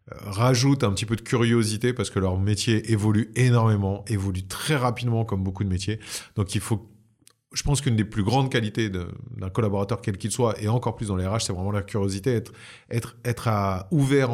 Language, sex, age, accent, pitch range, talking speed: French, male, 30-49, French, 105-135 Hz, 210 wpm